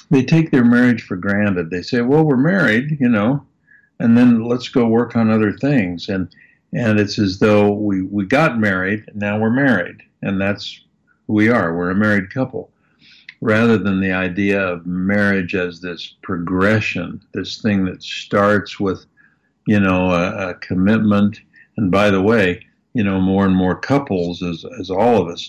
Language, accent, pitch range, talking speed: English, American, 90-110 Hz, 180 wpm